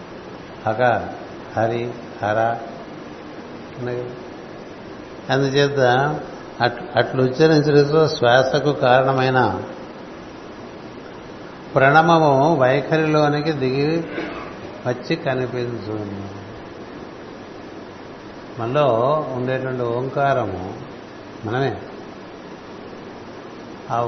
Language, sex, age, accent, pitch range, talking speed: Telugu, male, 60-79, native, 120-140 Hz, 45 wpm